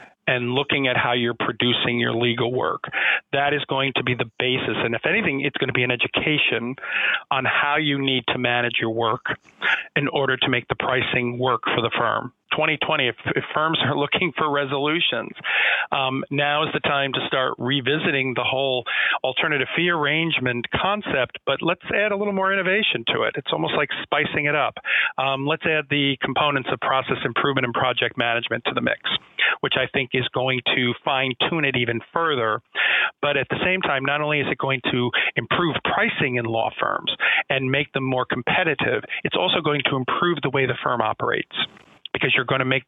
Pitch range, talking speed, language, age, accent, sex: 125-145 Hz, 195 wpm, English, 40-59, American, male